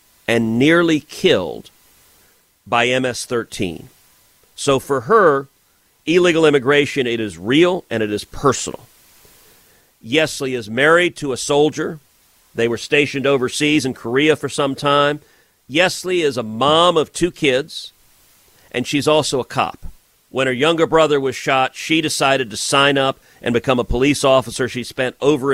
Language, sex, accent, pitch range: English, male, American, 115-150 Hz